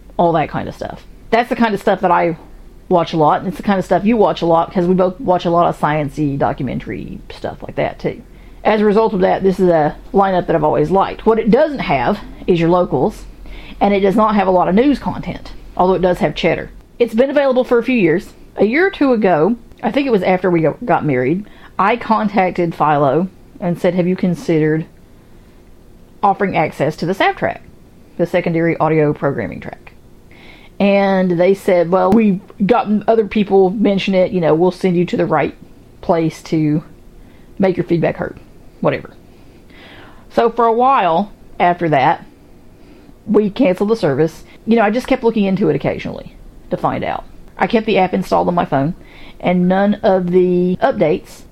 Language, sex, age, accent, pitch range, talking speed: English, female, 40-59, American, 170-215 Hz, 200 wpm